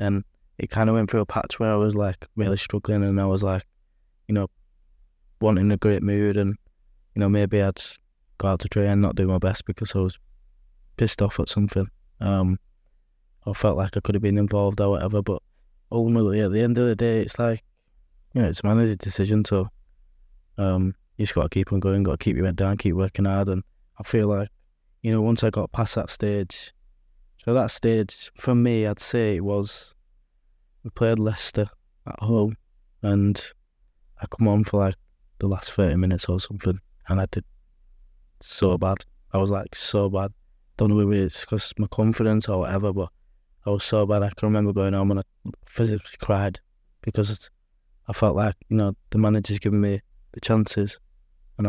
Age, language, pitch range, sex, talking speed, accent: 20-39, English, 95-105 Hz, male, 200 wpm, British